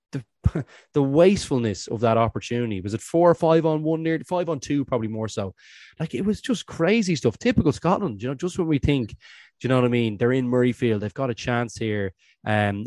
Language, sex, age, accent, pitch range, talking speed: English, male, 20-39, Irish, 110-130 Hz, 240 wpm